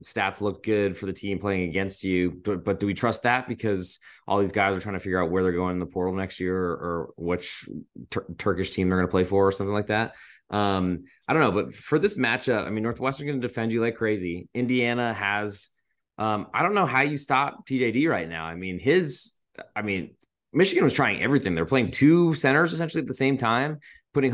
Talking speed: 230 wpm